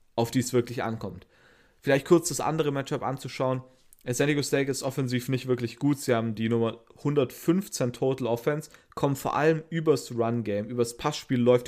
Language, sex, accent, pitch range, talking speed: German, male, German, 115-140 Hz, 175 wpm